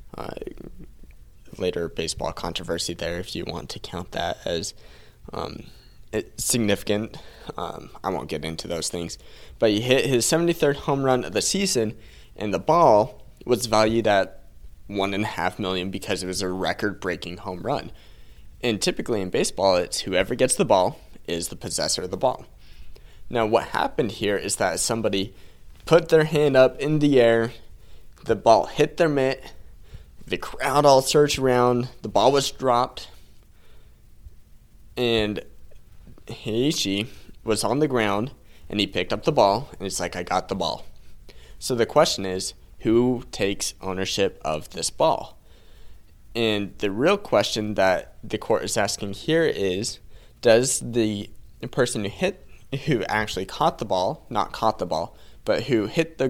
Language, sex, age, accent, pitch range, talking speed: English, male, 20-39, American, 90-125 Hz, 160 wpm